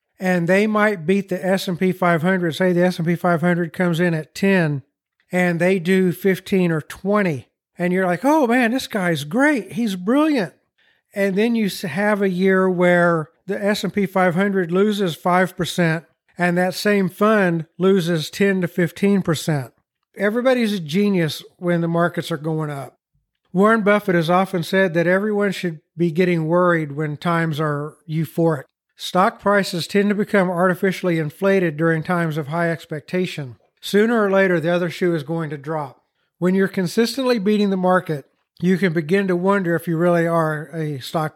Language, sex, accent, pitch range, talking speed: English, male, American, 170-195 Hz, 165 wpm